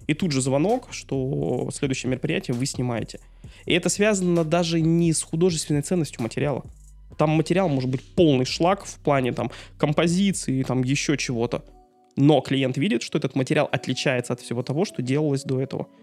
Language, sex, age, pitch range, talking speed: Russian, male, 20-39, 125-155 Hz, 170 wpm